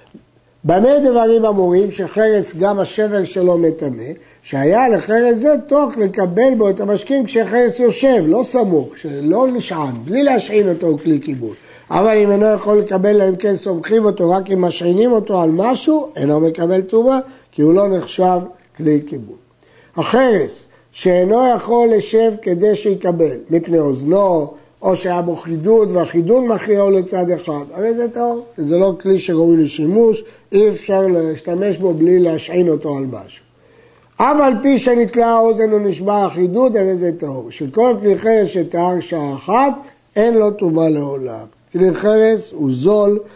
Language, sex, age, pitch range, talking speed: Hebrew, male, 60-79, 165-220 Hz, 155 wpm